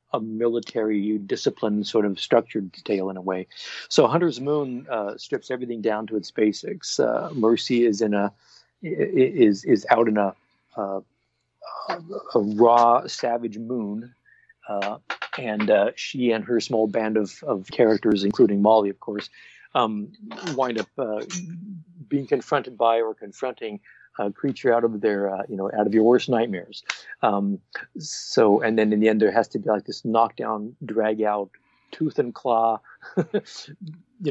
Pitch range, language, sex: 105-120 Hz, English, male